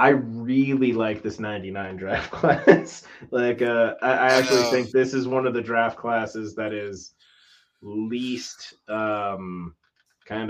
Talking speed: 145 wpm